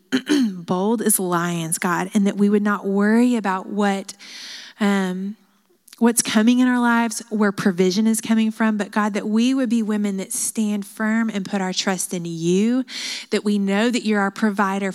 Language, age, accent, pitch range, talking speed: English, 30-49, American, 195-230 Hz, 180 wpm